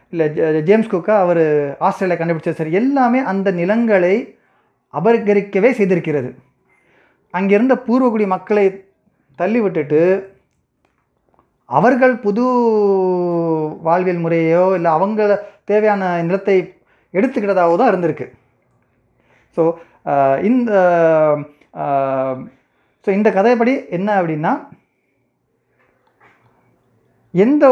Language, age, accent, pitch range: Tamil, 30-49, native, 165-210 Hz